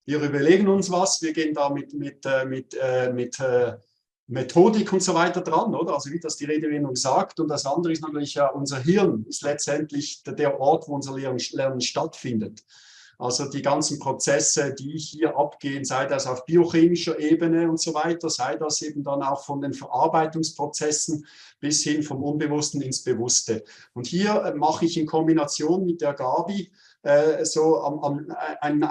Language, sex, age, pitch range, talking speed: German, male, 50-69, 140-165 Hz, 165 wpm